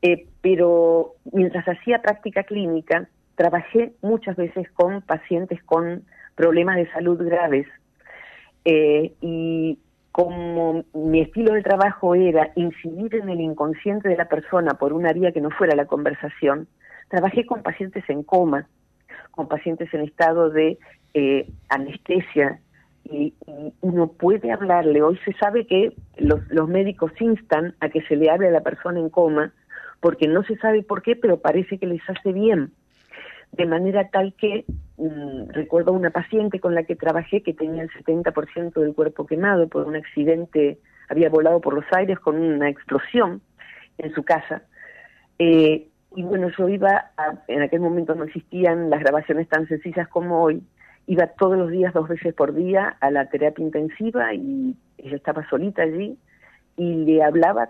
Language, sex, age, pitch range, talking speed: Spanish, female, 40-59, 155-185 Hz, 160 wpm